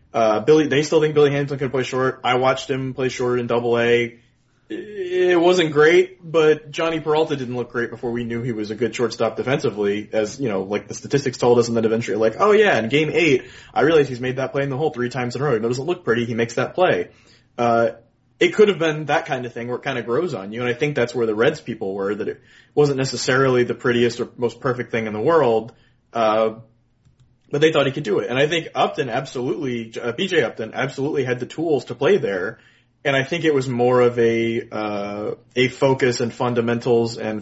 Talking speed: 240 wpm